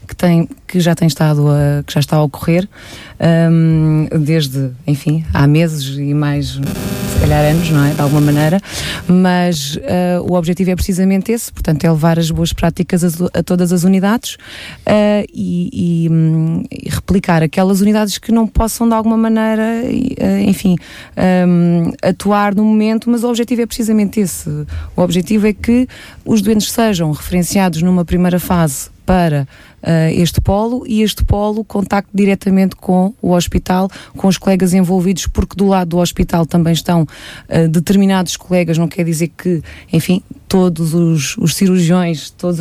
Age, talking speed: 20-39, 150 wpm